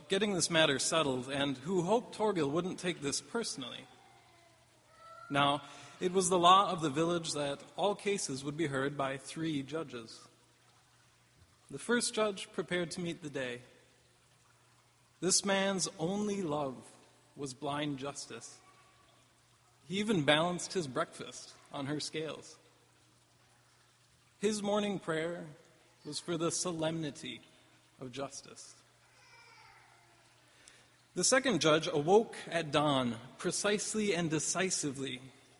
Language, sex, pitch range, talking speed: English, male, 140-185 Hz, 120 wpm